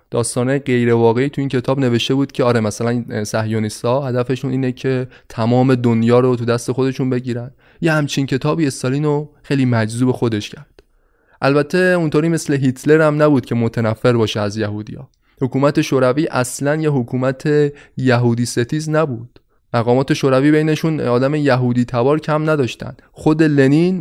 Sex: male